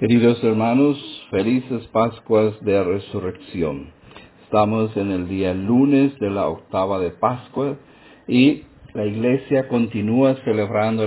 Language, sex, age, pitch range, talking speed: English, male, 50-69, 100-120 Hz, 115 wpm